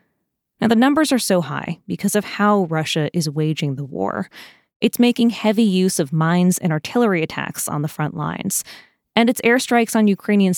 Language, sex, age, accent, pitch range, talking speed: English, female, 20-39, American, 170-215 Hz, 180 wpm